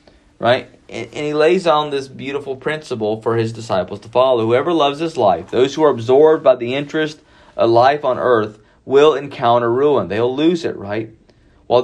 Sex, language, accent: male, English, American